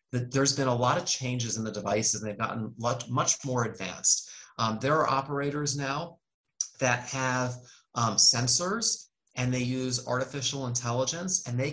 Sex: male